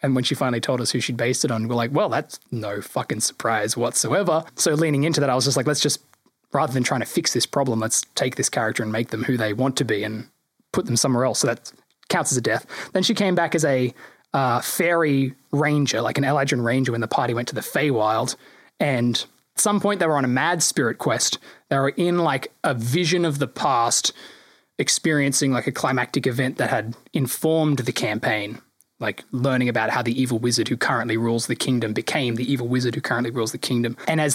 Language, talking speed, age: English, 230 wpm, 20-39